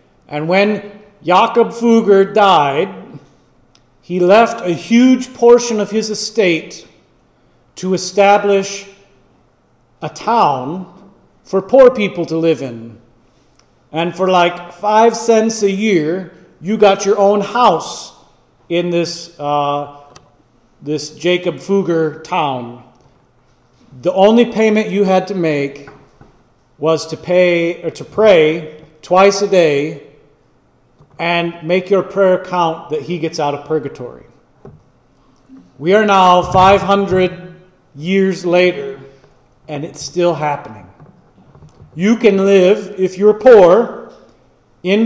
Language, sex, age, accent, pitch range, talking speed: English, male, 40-59, American, 150-200 Hz, 115 wpm